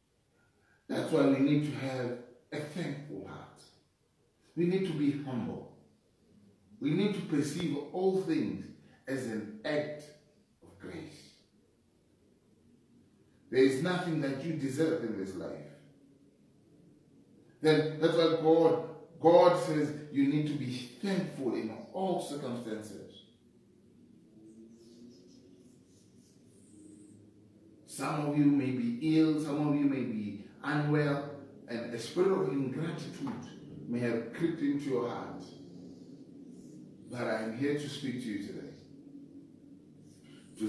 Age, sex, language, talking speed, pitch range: 40-59, male, English, 120 wpm, 110-155 Hz